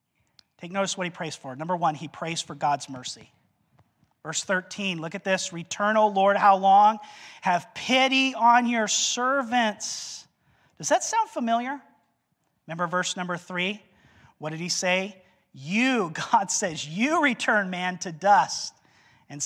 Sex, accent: male, American